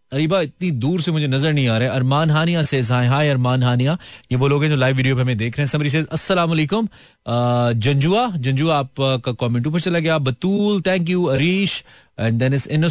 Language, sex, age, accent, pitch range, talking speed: Hindi, male, 30-49, native, 120-165 Hz, 180 wpm